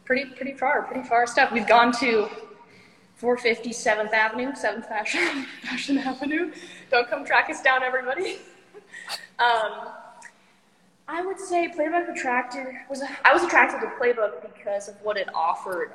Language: English